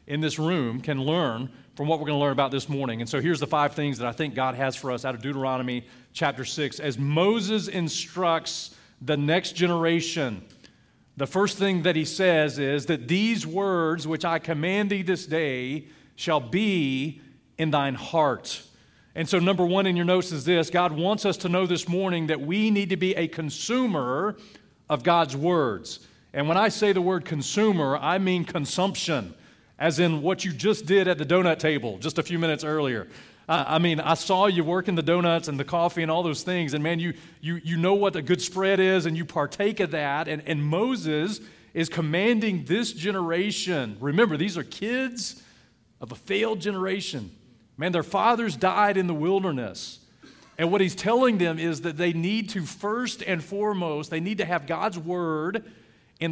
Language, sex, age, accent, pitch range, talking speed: English, male, 40-59, American, 150-190 Hz, 195 wpm